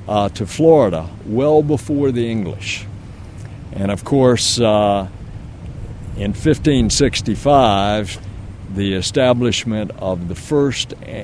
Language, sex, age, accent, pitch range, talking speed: English, male, 60-79, American, 100-140 Hz, 95 wpm